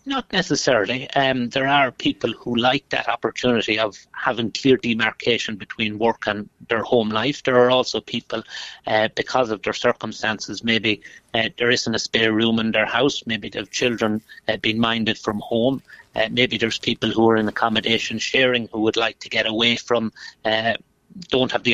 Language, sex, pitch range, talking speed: English, male, 115-130 Hz, 190 wpm